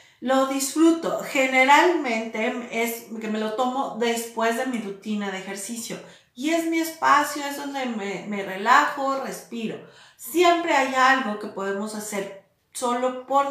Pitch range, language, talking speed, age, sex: 215-270 Hz, Spanish, 140 wpm, 40-59, female